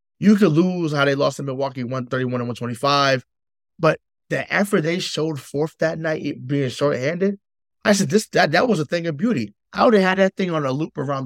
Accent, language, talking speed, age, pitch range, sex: American, English, 235 wpm, 20-39, 145-205 Hz, male